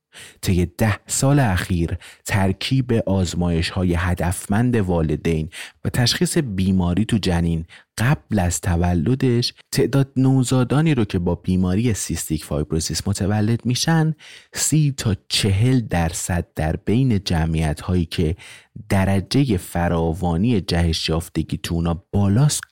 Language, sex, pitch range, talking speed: Persian, male, 85-110 Hz, 110 wpm